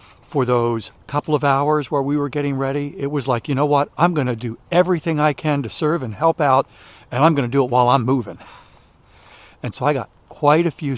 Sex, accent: male, American